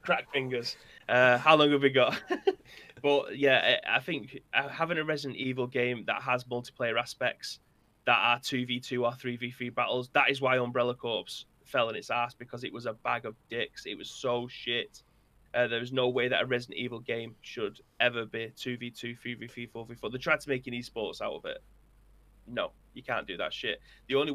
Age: 20-39